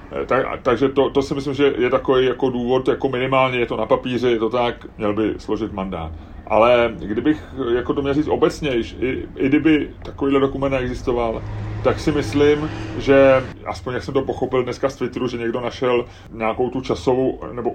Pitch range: 110-130 Hz